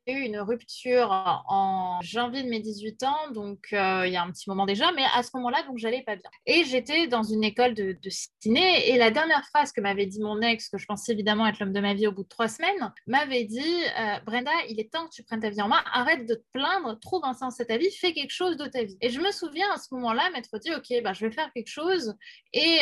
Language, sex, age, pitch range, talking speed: French, female, 20-39, 215-285 Hz, 270 wpm